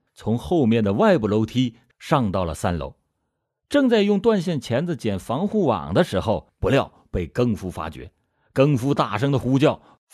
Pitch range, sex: 100-145 Hz, male